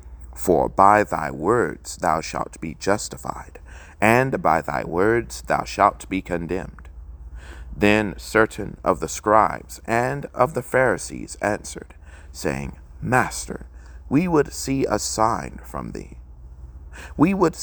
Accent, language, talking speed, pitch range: American, English, 125 wpm, 70-115 Hz